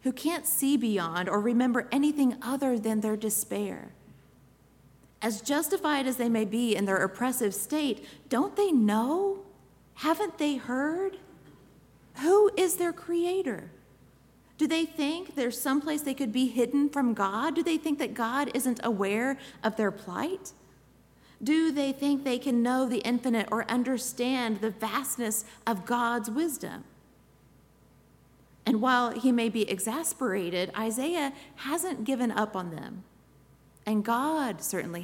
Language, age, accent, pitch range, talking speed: English, 40-59, American, 205-275 Hz, 140 wpm